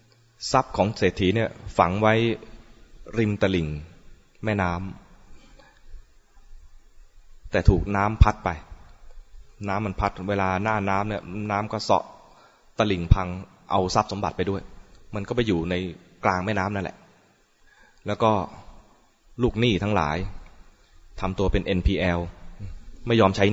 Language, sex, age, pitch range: English, male, 20-39, 90-105 Hz